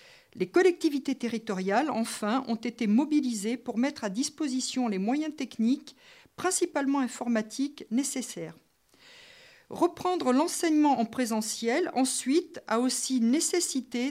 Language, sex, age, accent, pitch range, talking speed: French, female, 50-69, French, 230-305 Hz, 105 wpm